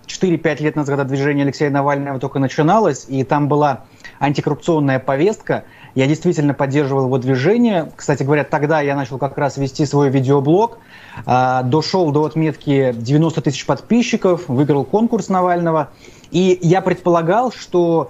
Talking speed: 135 wpm